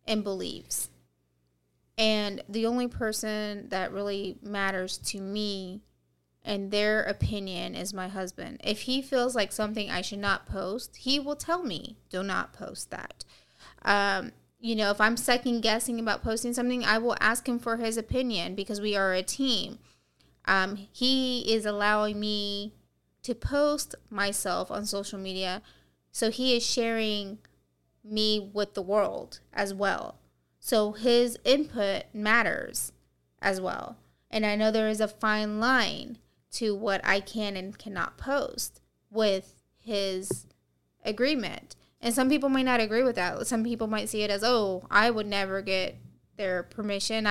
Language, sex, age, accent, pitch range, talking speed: English, female, 20-39, American, 195-230 Hz, 155 wpm